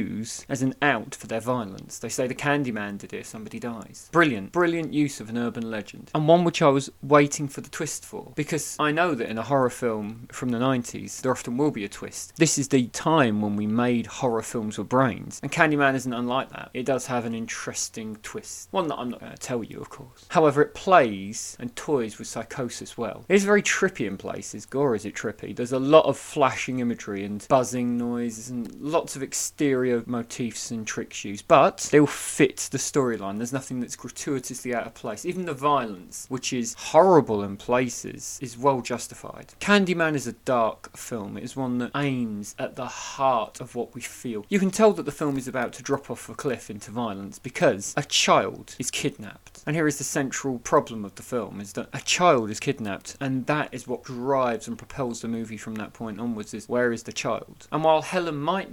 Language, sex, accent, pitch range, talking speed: English, male, British, 115-145 Hz, 220 wpm